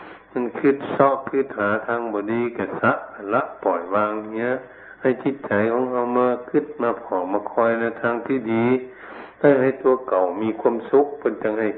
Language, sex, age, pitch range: Thai, male, 60-79, 100-130 Hz